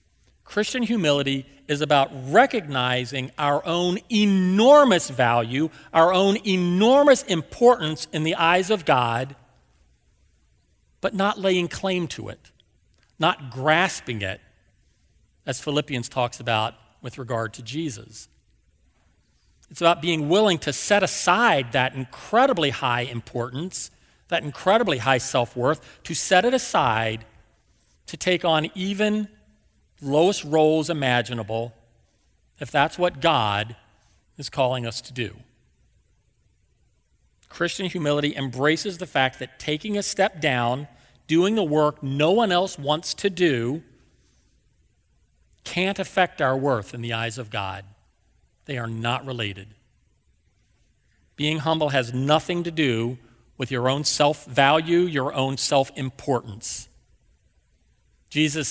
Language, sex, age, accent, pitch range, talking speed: English, male, 40-59, American, 115-170 Hz, 120 wpm